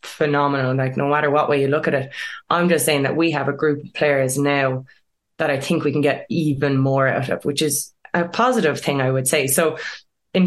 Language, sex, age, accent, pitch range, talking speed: English, female, 20-39, Irish, 140-175 Hz, 235 wpm